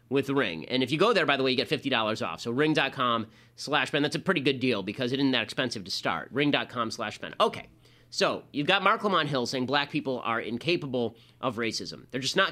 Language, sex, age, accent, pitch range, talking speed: English, male, 30-49, American, 120-155 Hz, 240 wpm